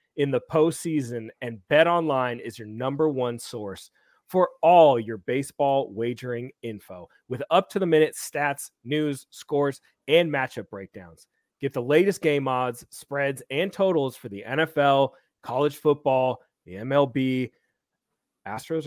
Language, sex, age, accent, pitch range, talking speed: English, male, 30-49, American, 120-155 Hz, 140 wpm